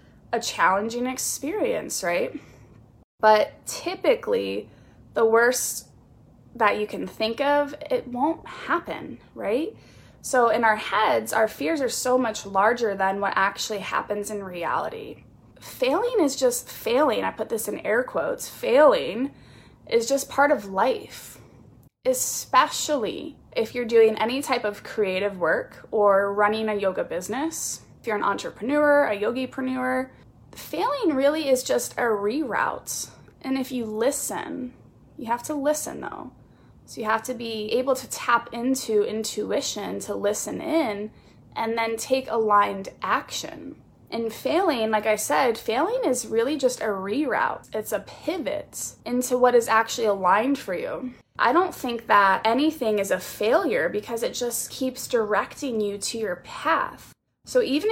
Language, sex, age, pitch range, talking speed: English, female, 20-39, 215-280 Hz, 145 wpm